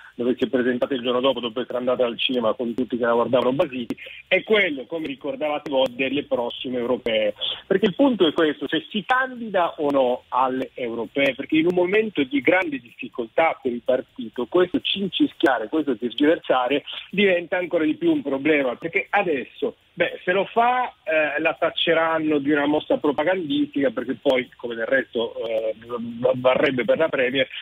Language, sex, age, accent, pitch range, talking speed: Italian, male, 40-59, native, 130-215 Hz, 175 wpm